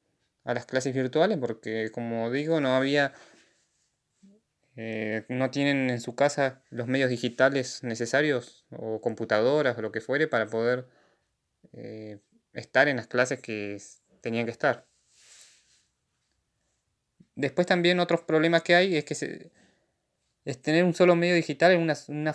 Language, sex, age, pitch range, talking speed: Spanish, male, 20-39, 115-145 Hz, 140 wpm